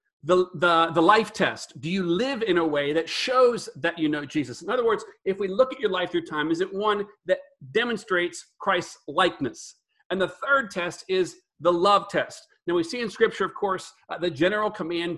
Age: 40-59